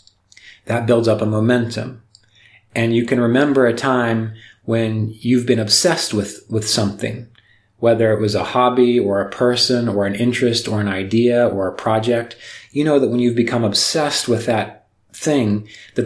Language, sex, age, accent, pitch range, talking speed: English, male, 30-49, American, 105-125 Hz, 170 wpm